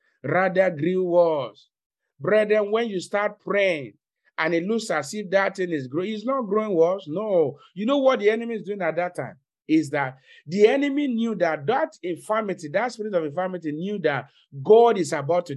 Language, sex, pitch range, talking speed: English, male, 150-215 Hz, 195 wpm